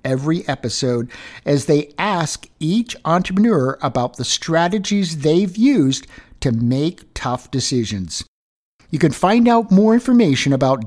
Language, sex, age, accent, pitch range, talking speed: English, male, 50-69, American, 115-155 Hz, 125 wpm